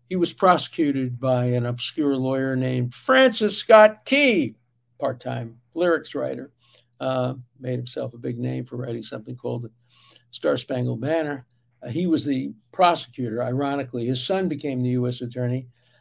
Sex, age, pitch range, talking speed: male, 60-79, 125-160 Hz, 145 wpm